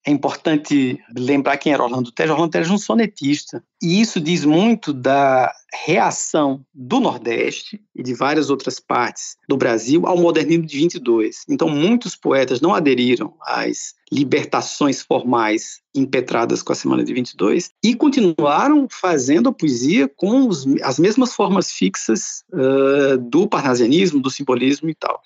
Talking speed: 150 wpm